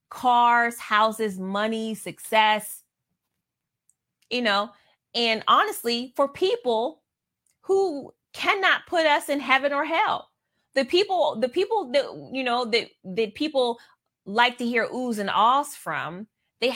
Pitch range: 215-320 Hz